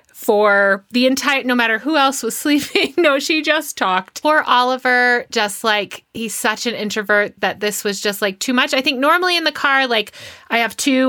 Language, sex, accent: English, female, American